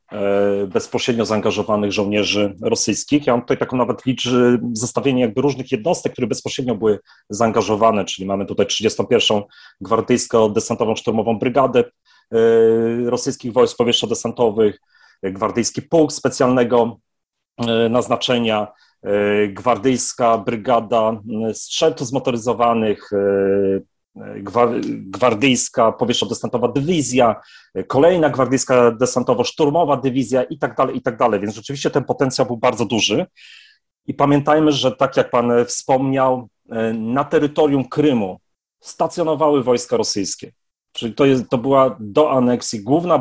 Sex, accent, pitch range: male, native, 110-130 Hz